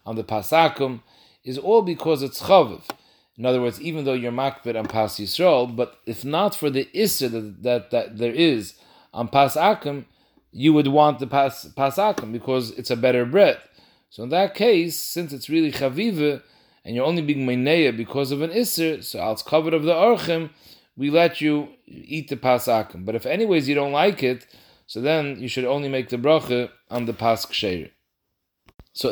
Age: 40-59